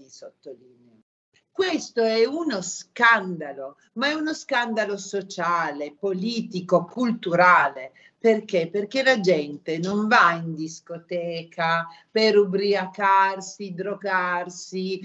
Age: 40-59